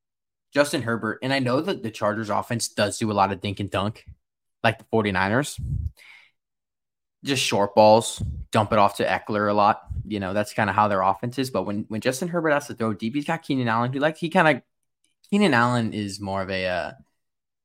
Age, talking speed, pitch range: 10-29, 220 wpm, 100-120 Hz